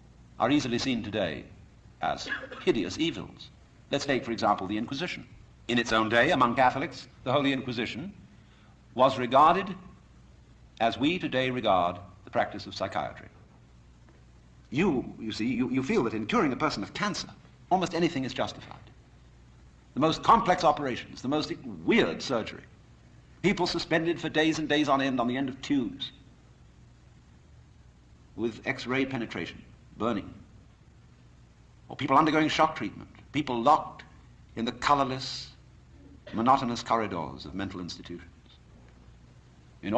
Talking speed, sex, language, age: 135 wpm, male, English, 60-79